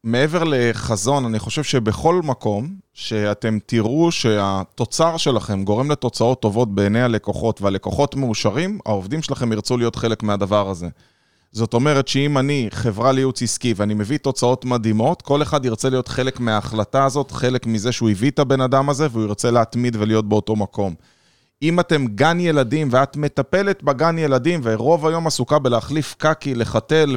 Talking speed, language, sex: 155 wpm, Hebrew, male